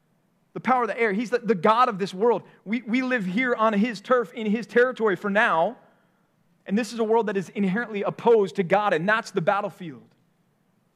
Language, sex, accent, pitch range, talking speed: English, male, American, 155-200 Hz, 215 wpm